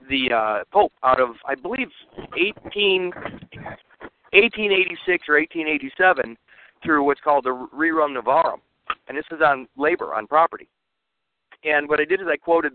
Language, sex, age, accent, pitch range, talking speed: English, male, 50-69, American, 130-170 Hz, 145 wpm